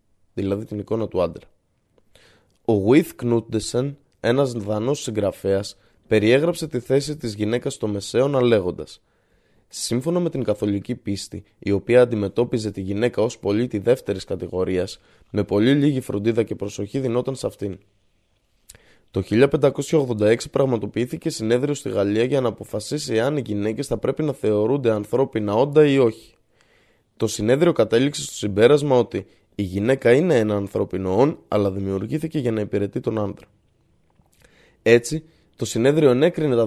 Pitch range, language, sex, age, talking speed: 105-140 Hz, Greek, male, 20-39, 140 wpm